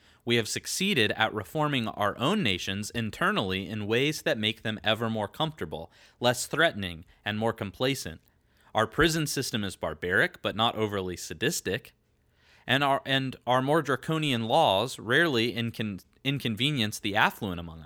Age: 30-49